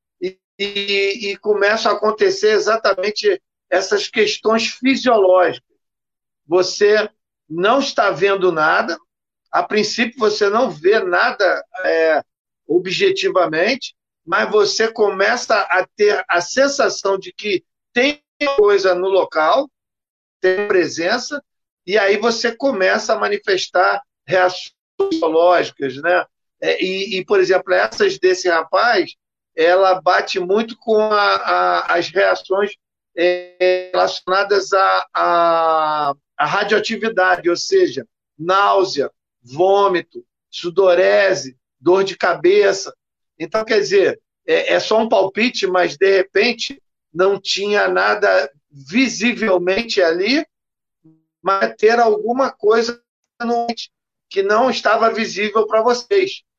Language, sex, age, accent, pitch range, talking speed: Portuguese, male, 50-69, Brazilian, 185-240 Hz, 100 wpm